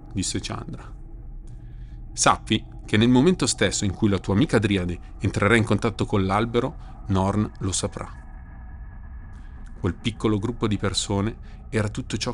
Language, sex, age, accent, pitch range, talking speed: Italian, male, 40-59, native, 95-115 Hz, 140 wpm